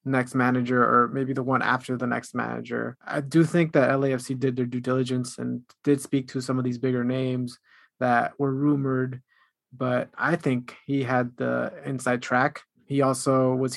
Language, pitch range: English, 125-145 Hz